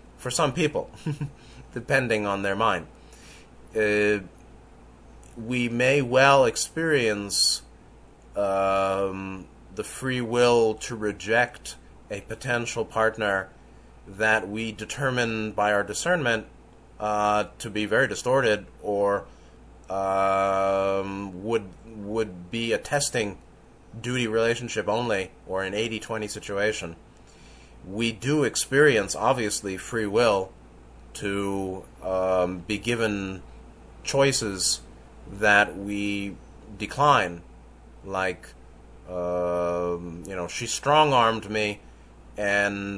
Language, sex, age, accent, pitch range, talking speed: English, male, 30-49, American, 90-115 Hz, 95 wpm